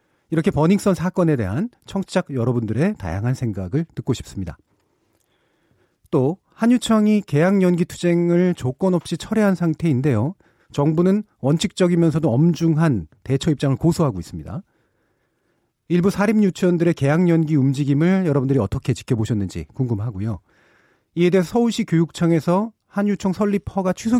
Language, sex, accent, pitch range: Korean, male, native, 115-175 Hz